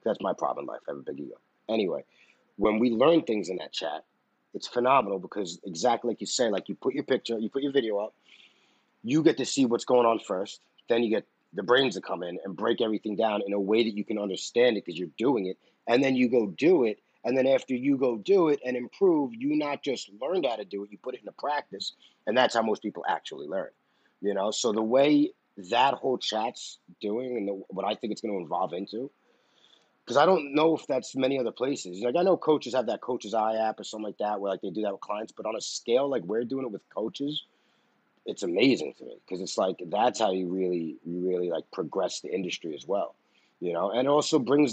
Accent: American